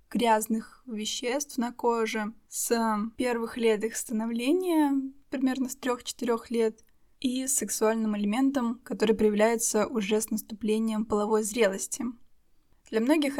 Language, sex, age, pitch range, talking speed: Russian, female, 20-39, 215-255 Hz, 110 wpm